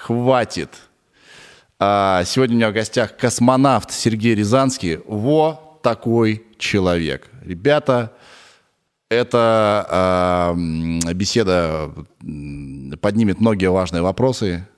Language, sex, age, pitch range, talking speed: Russian, male, 20-39, 90-125 Hz, 75 wpm